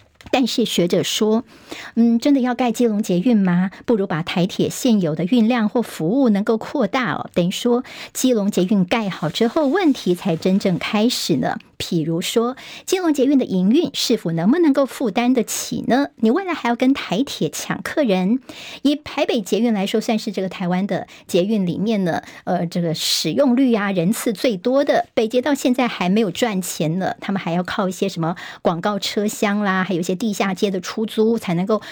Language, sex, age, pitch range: Chinese, male, 50-69, 190-250 Hz